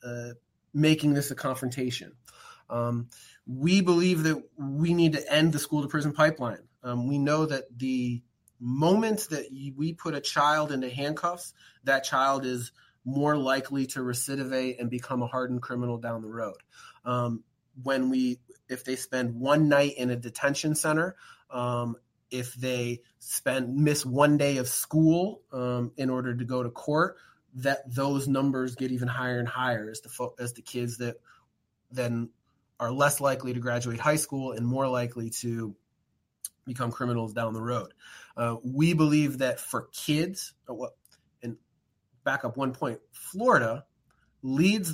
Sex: male